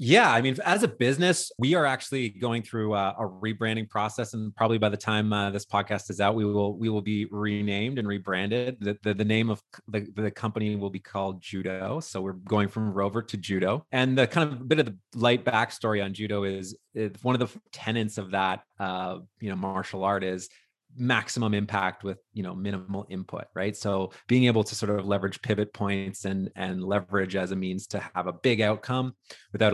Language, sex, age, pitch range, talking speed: English, male, 30-49, 95-115 Hz, 215 wpm